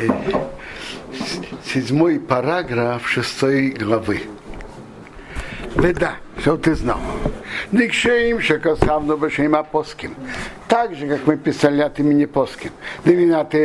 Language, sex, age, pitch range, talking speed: Russian, male, 60-79, 145-210 Hz, 60 wpm